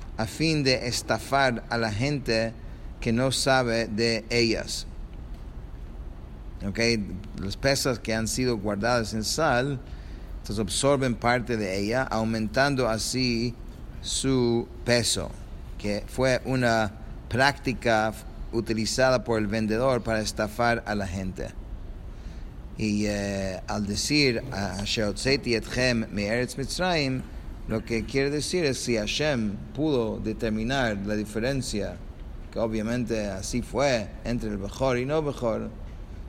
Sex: male